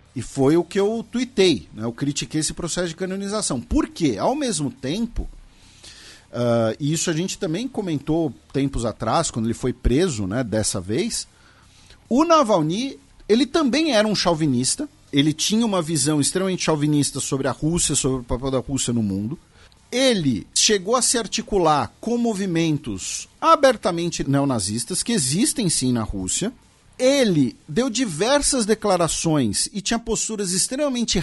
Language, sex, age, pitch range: Portuguese, male, 50-69, 145-215 Hz